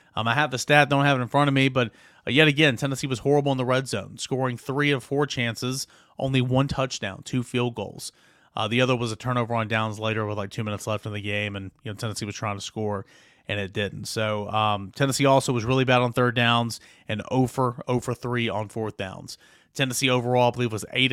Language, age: English, 30-49